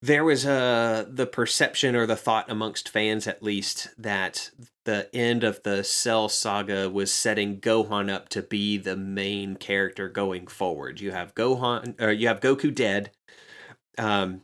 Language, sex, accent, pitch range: English, male, American, 100-110 Hz